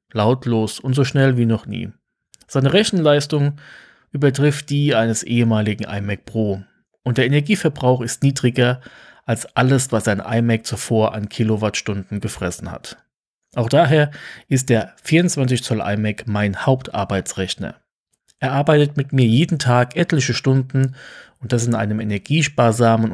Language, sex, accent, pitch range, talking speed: German, male, German, 110-135 Hz, 135 wpm